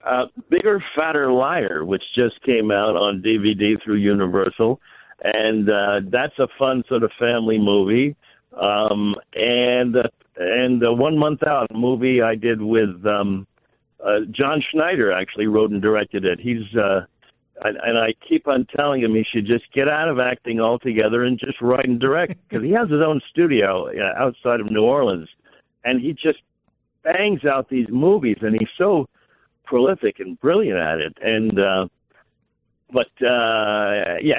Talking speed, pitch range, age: 170 wpm, 105-130 Hz, 60-79